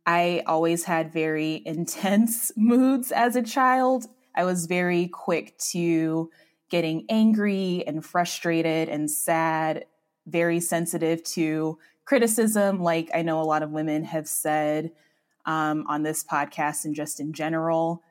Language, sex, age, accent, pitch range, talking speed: English, female, 20-39, American, 155-195 Hz, 135 wpm